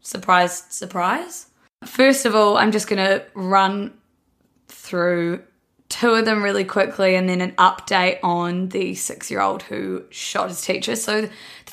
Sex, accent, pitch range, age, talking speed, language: female, Australian, 180-215 Hz, 20-39, 150 wpm, English